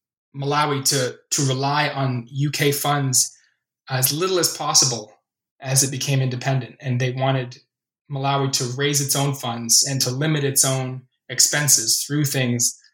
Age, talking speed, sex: 20-39, 150 wpm, male